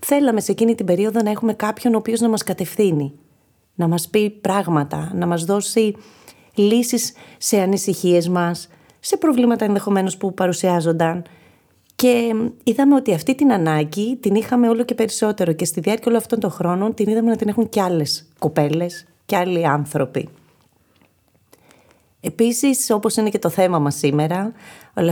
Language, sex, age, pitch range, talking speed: Greek, female, 30-49, 165-220 Hz, 160 wpm